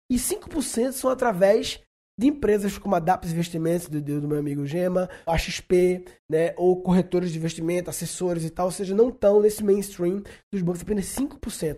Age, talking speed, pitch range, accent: 20-39, 175 wpm, 175-235 Hz, Brazilian